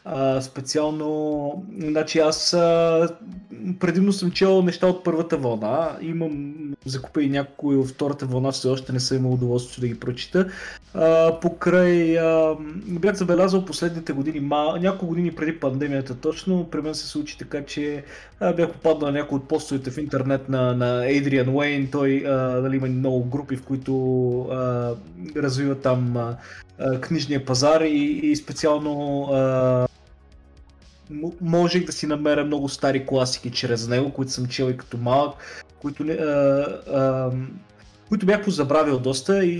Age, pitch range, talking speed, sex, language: 20-39, 130-165 Hz, 150 wpm, male, Bulgarian